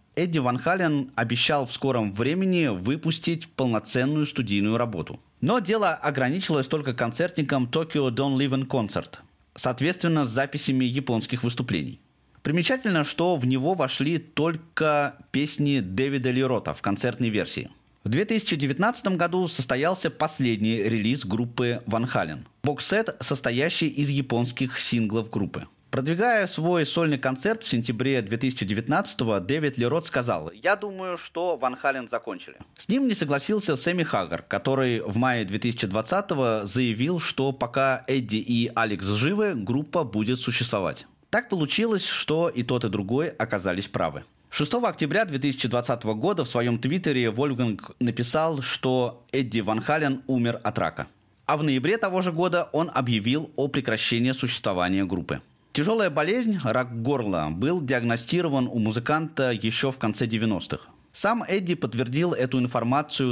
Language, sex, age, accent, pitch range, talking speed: Russian, male, 30-49, native, 120-155 Hz, 135 wpm